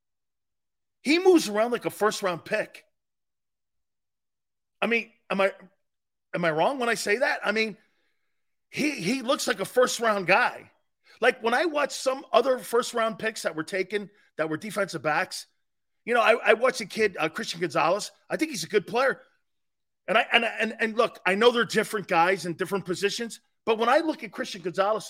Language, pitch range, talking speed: English, 185-250 Hz, 190 wpm